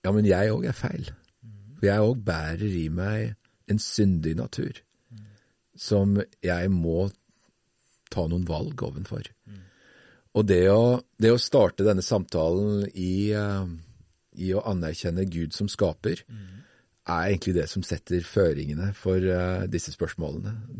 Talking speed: 135 wpm